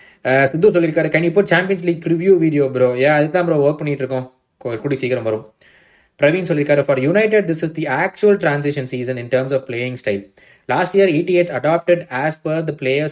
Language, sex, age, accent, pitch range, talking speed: Tamil, male, 20-39, native, 135-190 Hz, 65 wpm